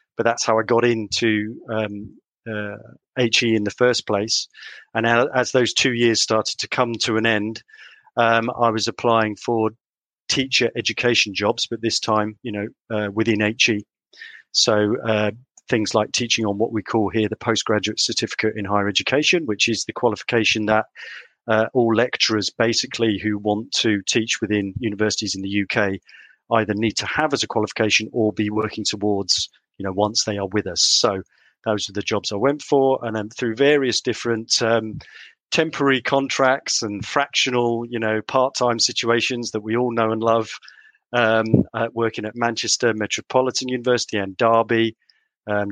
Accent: British